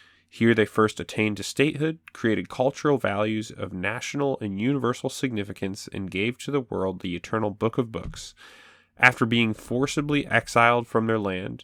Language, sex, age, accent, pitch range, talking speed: English, male, 10-29, American, 95-115 Hz, 160 wpm